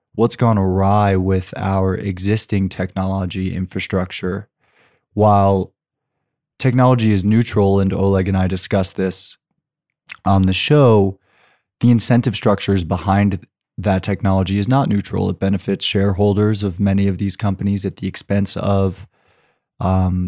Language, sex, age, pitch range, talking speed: English, male, 20-39, 95-105 Hz, 125 wpm